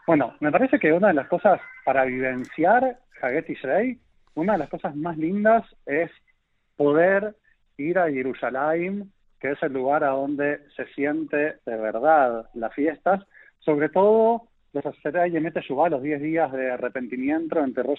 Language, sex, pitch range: Spanish, male, 135-180 Hz